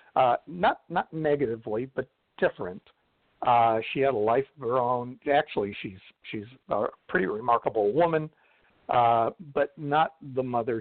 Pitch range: 115-150 Hz